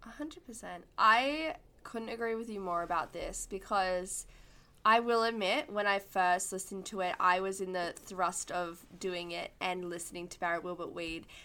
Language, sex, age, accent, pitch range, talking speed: English, female, 10-29, Australian, 180-220 Hz, 185 wpm